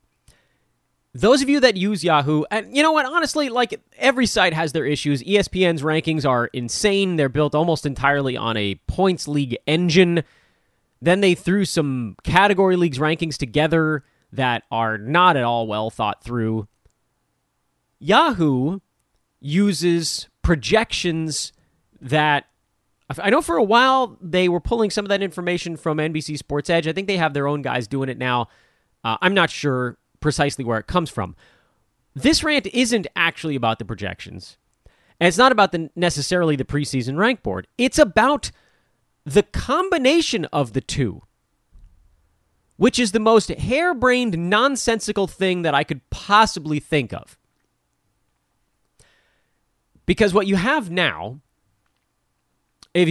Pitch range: 130-200 Hz